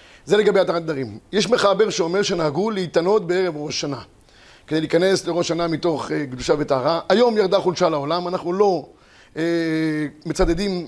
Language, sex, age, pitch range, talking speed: Hebrew, male, 30-49, 160-200 Hz, 155 wpm